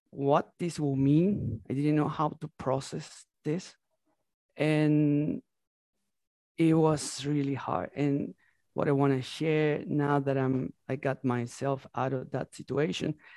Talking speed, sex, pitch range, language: 145 wpm, male, 130-155 Hz, English